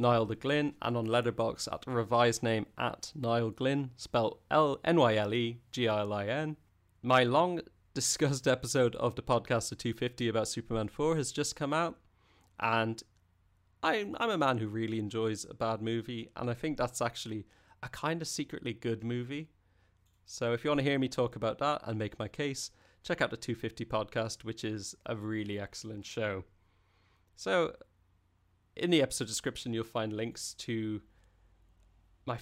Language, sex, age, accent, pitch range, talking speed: English, male, 30-49, British, 105-130 Hz, 180 wpm